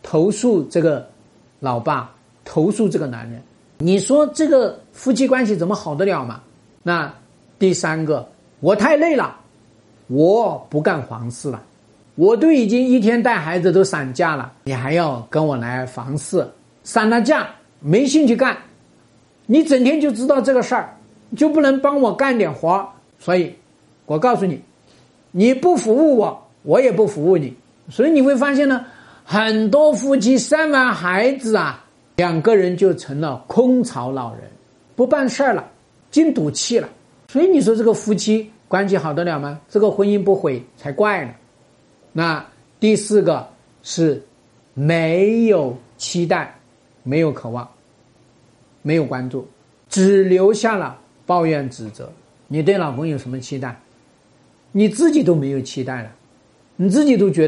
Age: 50-69